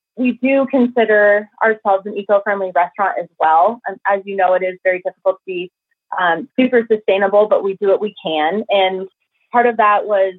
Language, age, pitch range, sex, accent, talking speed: English, 30-49, 185-235 Hz, female, American, 185 wpm